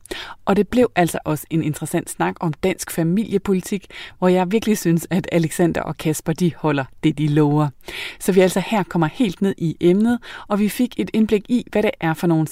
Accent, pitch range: native, 155-190 Hz